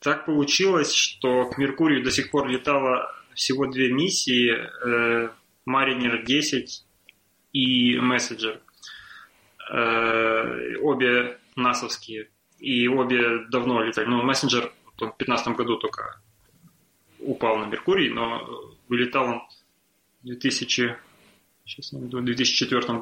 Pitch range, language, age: 115-135 Hz, Russian, 20-39